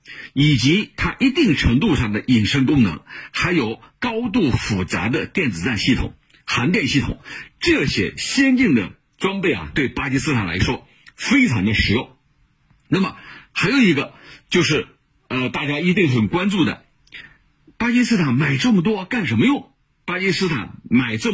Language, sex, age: Chinese, male, 50-69